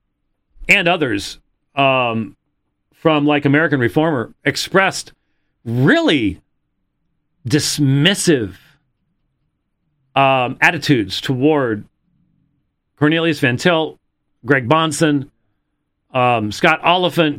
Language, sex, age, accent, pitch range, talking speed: English, male, 40-59, American, 115-155 Hz, 70 wpm